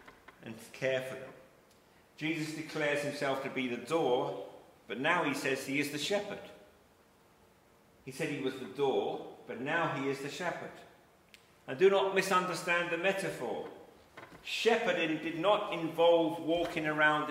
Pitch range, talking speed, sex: 140-175 Hz, 155 wpm, male